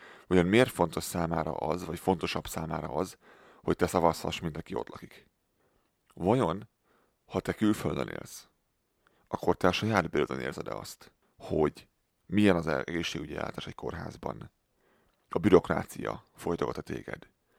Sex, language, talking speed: male, Hungarian, 130 wpm